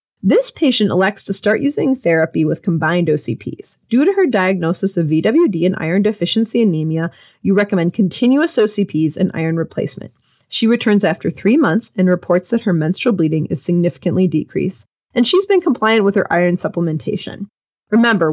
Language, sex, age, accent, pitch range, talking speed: English, female, 30-49, American, 170-225 Hz, 165 wpm